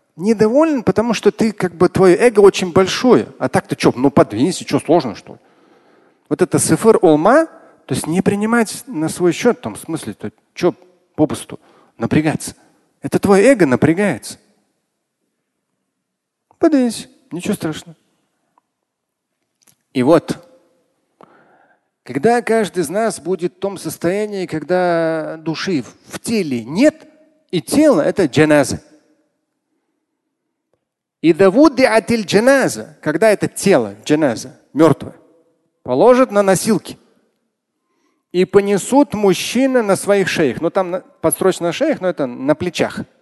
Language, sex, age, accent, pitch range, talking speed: Russian, male, 40-59, native, 160-265 Hz, 125 wpm